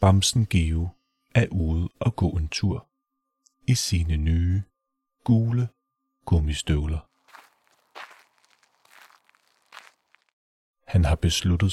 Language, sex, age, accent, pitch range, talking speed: Danish, male, 30-49, native, 85-115 Hz, 80 wpm